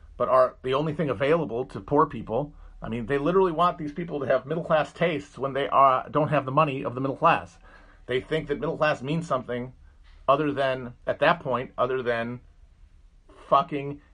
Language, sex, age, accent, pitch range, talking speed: English, male, 40-59, American, 95-145 Hz, 195 wpm